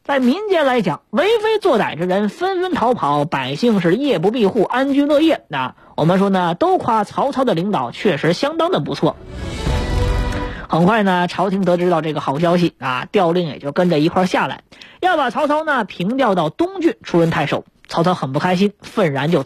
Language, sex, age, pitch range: Chinese, female, 20-39, 165-250 Hz